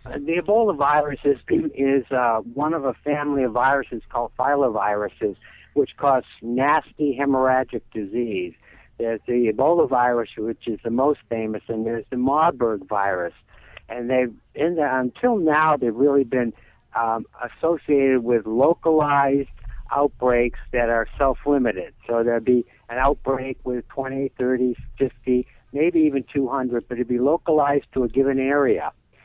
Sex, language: male, English